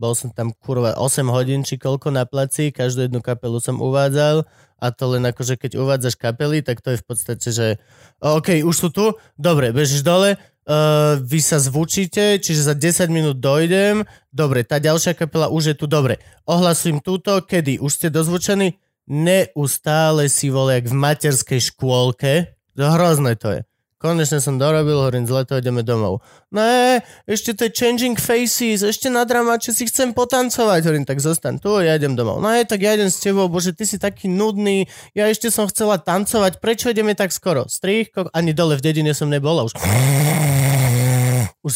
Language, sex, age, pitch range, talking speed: Slovak, male, 20-39, 135-185 Hz, 185 wpm